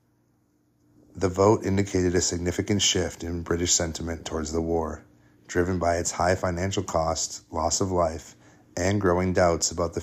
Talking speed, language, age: 155 wpm, English, 30-49